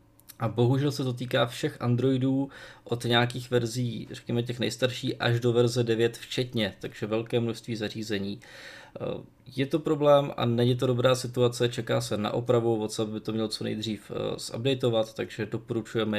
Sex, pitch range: male, 110-130 Hz